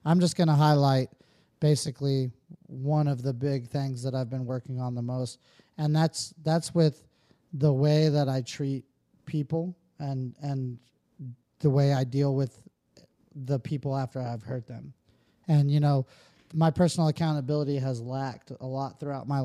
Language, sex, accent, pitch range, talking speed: English, male, American, 135-155 Hz, 165 wpm